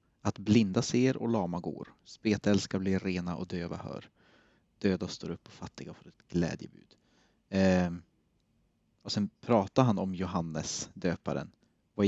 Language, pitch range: Swedish, 90-110 Hz